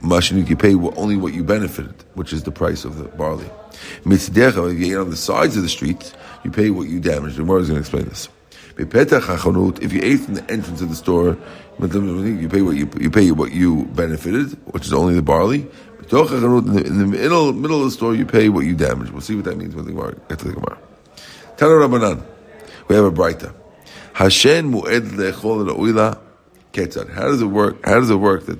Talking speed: 190 wpm